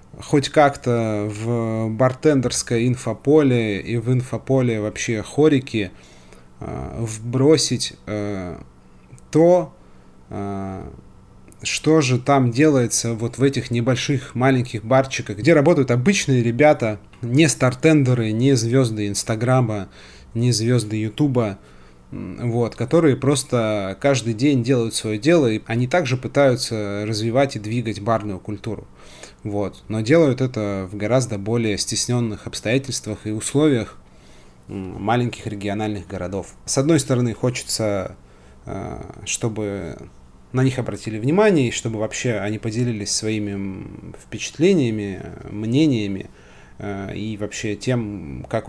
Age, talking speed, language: 20-39, 105 wpm, Russian